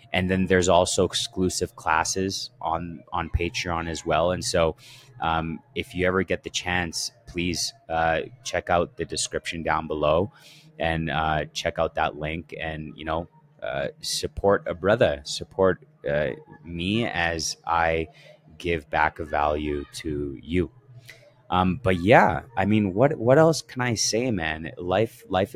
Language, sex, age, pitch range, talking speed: English, male, 30-49, 80-100 Hz, 155 wpm